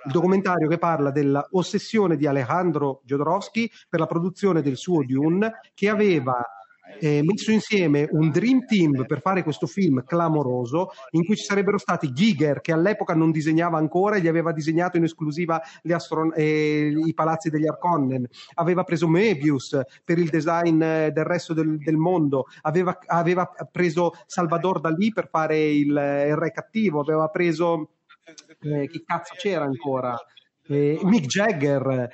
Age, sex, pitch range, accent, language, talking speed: 30-49, male, 155-190 Hz, native, Italian, 150 wpm